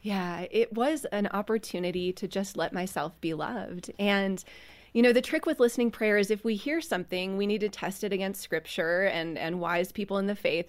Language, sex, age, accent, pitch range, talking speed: English, female, 30-49, American, 185-225 Hz, 215 wpm